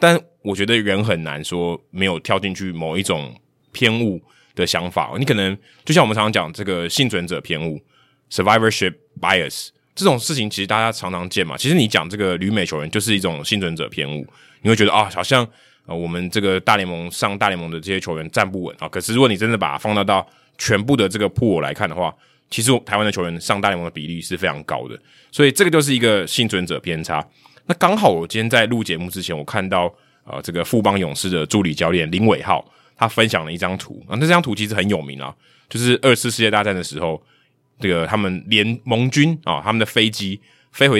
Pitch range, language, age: 90-115 Hz, Chinese, 20-39